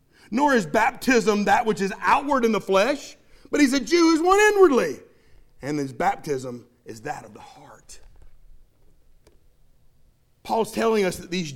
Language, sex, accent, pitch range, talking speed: English, male, American, 195-275 Hz, 155 wpm